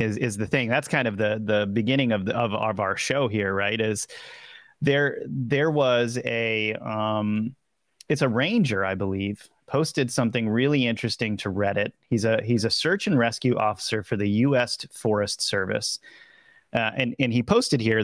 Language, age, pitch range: English, 30-49, 105-130 Hz